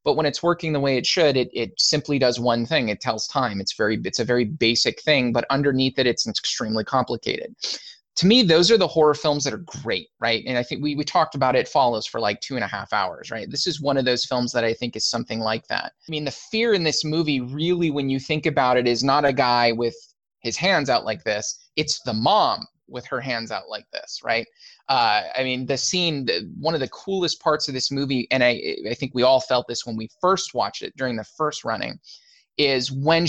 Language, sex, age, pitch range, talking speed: English, male, 20-39, 125-160 Hz, 245 wpm